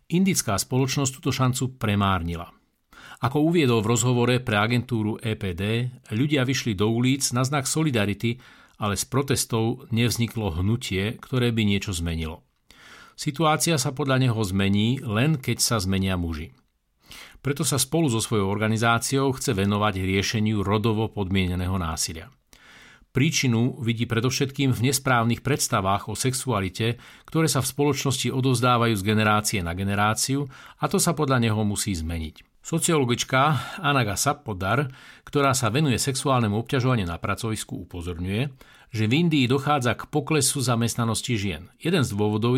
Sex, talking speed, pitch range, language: male, 135 wpm, 105-135 Hz, Slovak